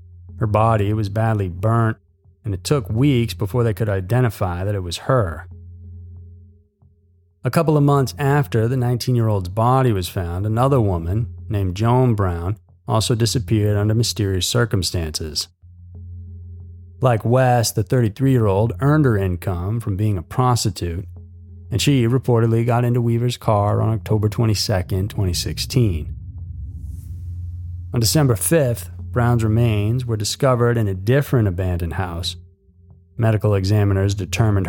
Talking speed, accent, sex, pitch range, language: 130 wpm, American, male, 90-120 Hz, English